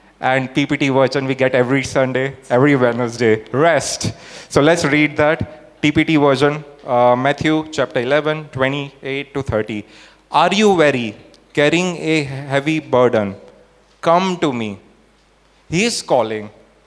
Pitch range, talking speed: 120-155 Hz, 130 wpm